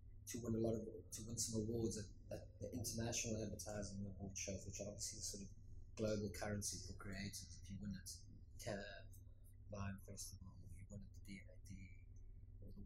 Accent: British